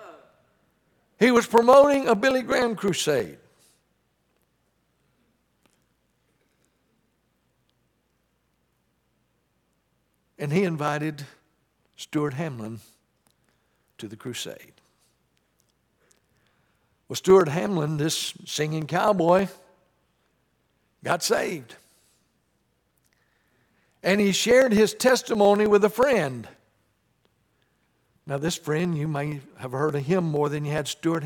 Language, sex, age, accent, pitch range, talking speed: English, male, 60-79, American, 145-200 Hz, 85 wpm